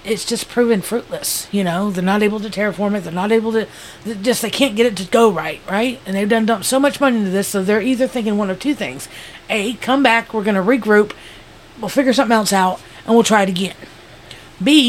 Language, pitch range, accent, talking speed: English, 205-260 Hz, American, 240 wpm